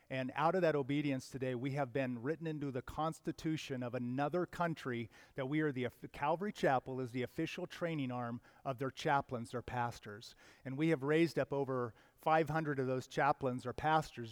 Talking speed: 185 wpm